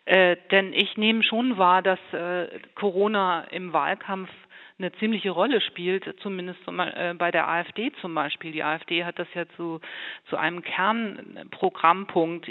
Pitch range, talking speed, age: 165-185 Hz, 160 wpm, 40-59